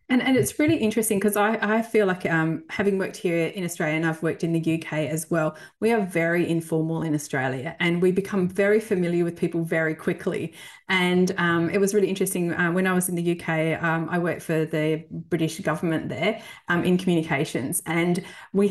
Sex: female